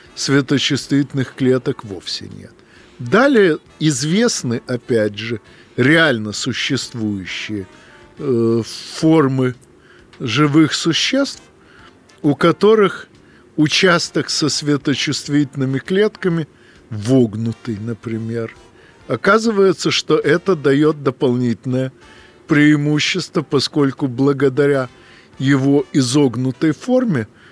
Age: 50-69